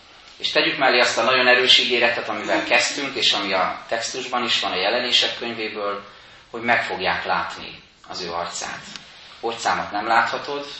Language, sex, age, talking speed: Hungarian, male, 30-49, 160 wpm